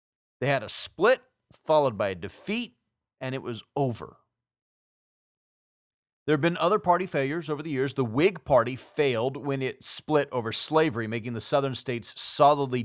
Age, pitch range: 40-59, 110-145 Hz